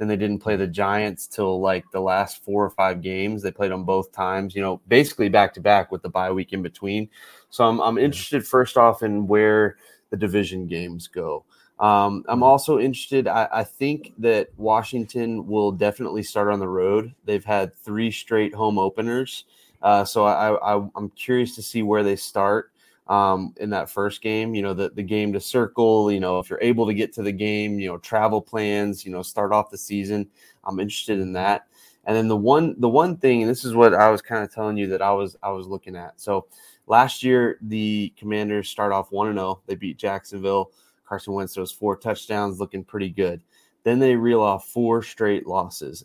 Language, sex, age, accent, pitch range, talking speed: English, male, 30-49, American, 95-110 Hz, 210 wpm